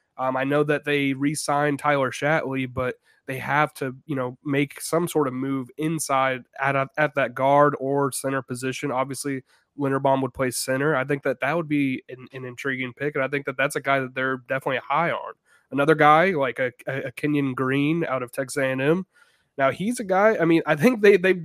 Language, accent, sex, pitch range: English, American, male, 135-160 Hz